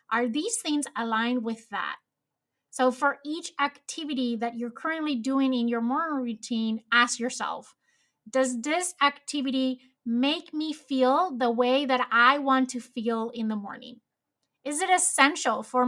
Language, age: English, 30-49